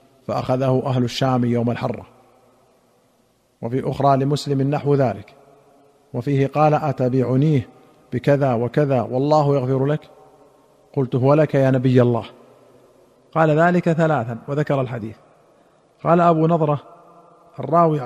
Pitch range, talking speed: 130-155 Hz, 110 wpm